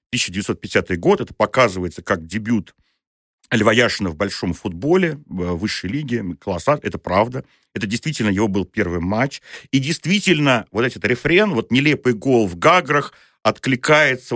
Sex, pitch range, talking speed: male, 105-140 Hz, 140 wpm